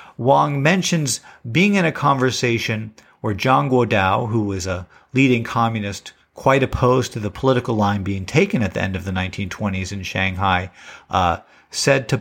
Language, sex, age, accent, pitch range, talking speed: English, male, 50-69, American, 95-135 Hz, 160 wpm